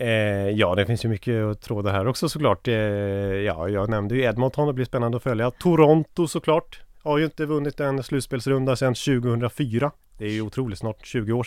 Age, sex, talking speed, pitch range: 30-49, male, 195 wpm, 105-140 Hz